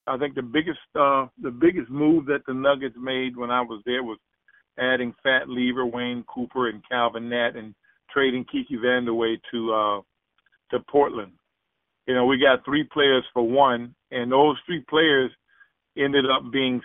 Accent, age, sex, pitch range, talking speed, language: American, 50-69, male, 125-155 Hz, 170 wpm, English